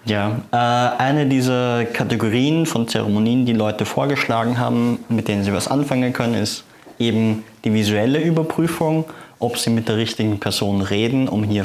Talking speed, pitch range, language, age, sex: 155 wpm, 110-135 Hz, English, 20-39, male